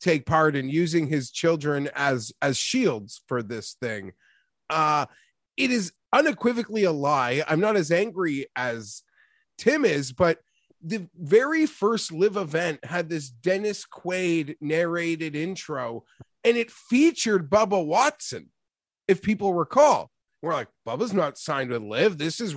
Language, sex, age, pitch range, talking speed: English, male, 30-49, 155-225 Hz, 145 wpm